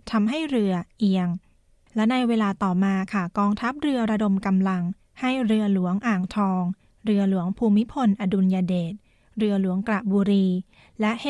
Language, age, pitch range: Thai, 20-39, 190-225 Hz